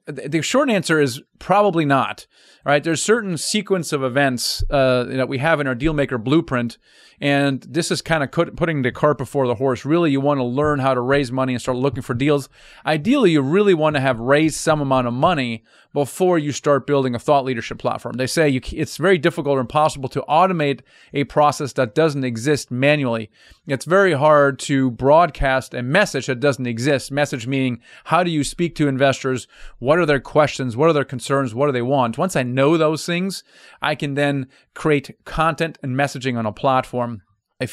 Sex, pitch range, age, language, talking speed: male, 130-155 Hz, 30-49, English, 200 wpm